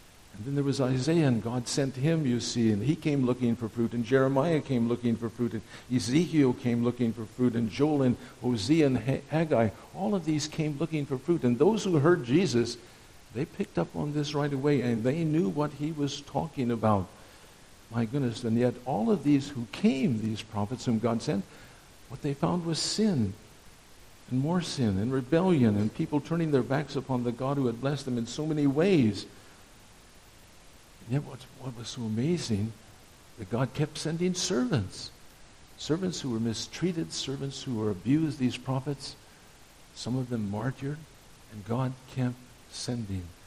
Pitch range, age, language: 115-145 Hz, 60-79, English